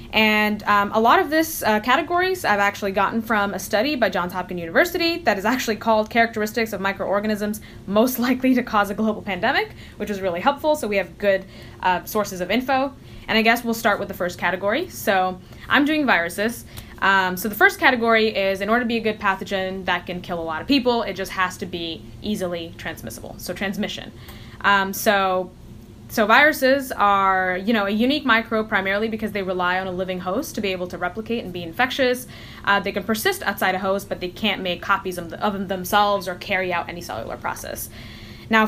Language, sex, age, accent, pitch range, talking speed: English, female, 10-29, American, 185-230 Hz, 210 wpm